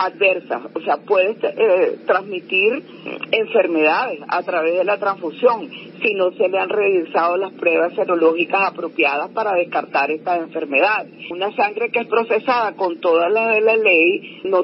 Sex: female